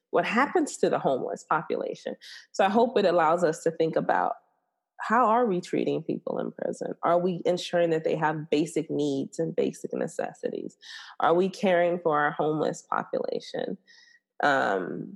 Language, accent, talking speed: English, American, 160 wpm